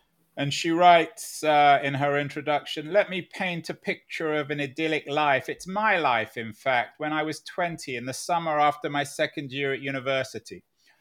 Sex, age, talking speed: male, 30-49, 185 wpm